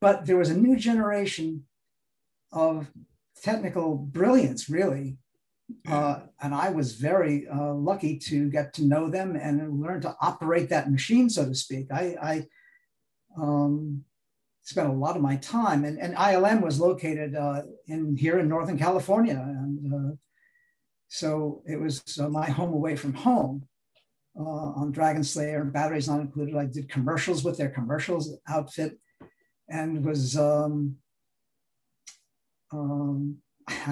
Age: 50-69